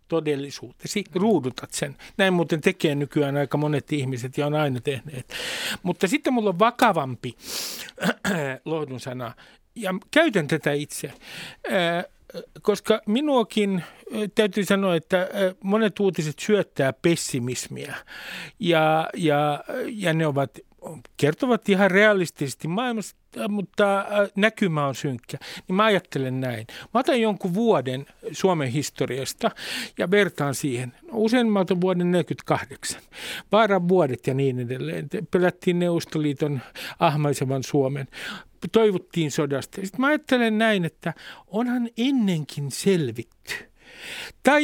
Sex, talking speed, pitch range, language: male, 120 wpm, 145-200 Hz, Finnish